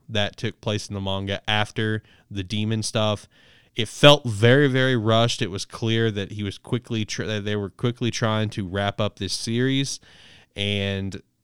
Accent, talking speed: American, 175 wpm